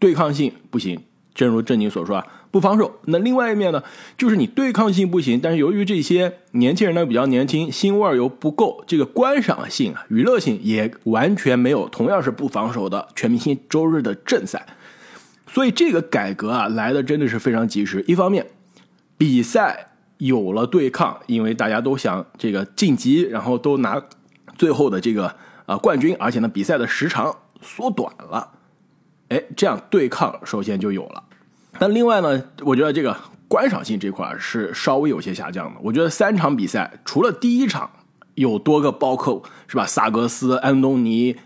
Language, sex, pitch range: Chinese, male, 125-205 Hz